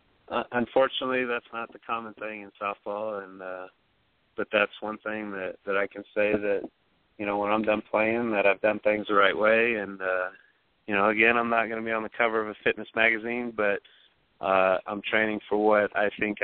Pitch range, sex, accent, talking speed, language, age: 105-120 Hz, male, American, 215 wpm, English, 20-39